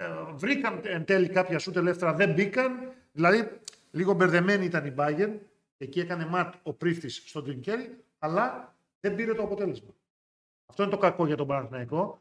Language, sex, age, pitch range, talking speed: Greek, male, 40-59, 145-185 Hz, 160 wpm